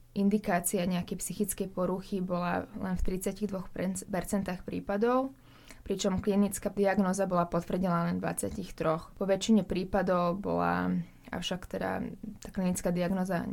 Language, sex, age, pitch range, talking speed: Slovak, female, 20-39, 180-210 Hz, 115 wpm